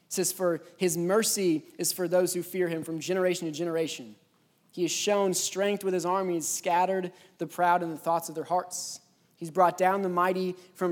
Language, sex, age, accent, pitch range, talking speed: English, male, 20-39, American, 175-200 Hz, 210 wpm